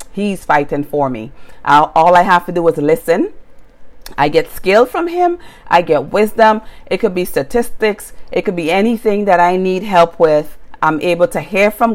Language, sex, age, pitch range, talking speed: English, female, 40-59, 150-210 Hz, 185 wpm